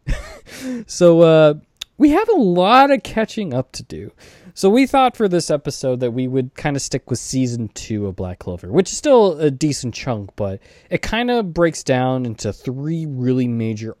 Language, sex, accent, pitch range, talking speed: English, male, American, 110-140 Hz, 195 wpm